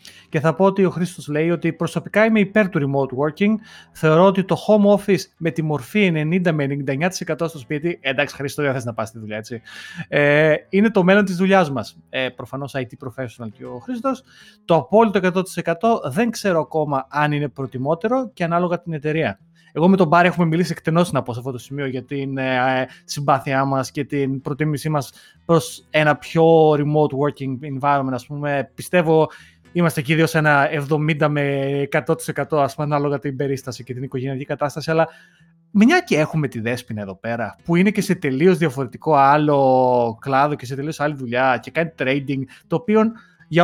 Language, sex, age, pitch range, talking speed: Greek, male, 30-49, 140-175 Hz, 185 wpm